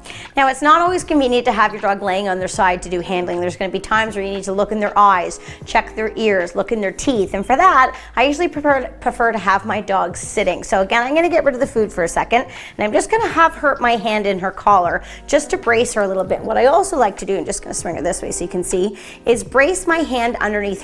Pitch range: 195-245 Hz